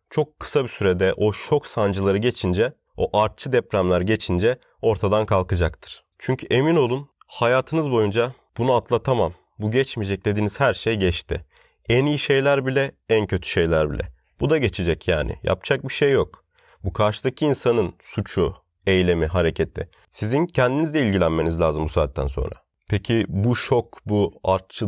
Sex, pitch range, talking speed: male, 90-120 Hz, 145 wpm